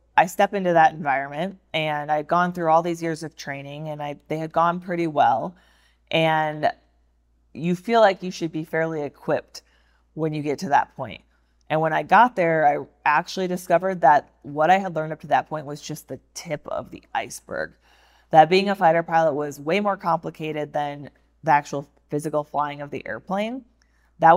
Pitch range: 145-170 Hz